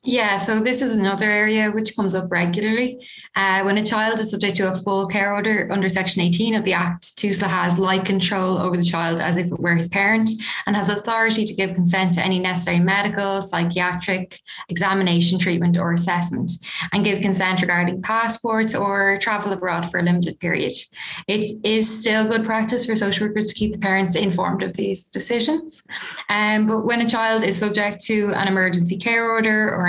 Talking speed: 195 wpm